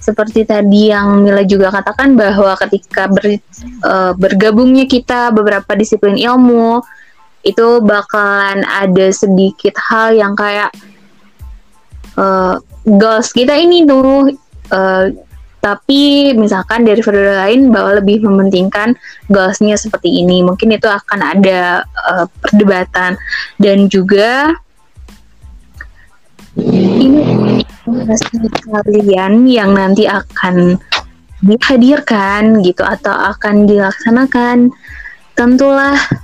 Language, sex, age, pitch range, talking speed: Indonesian, female, 20-39, 195-240 Hz, 95 wpm